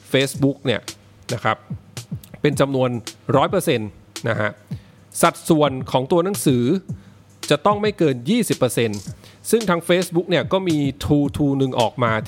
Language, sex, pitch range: English, male, 120-160 Hz